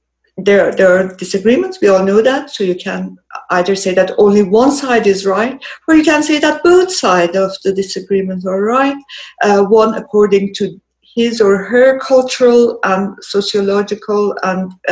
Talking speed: 170 wpm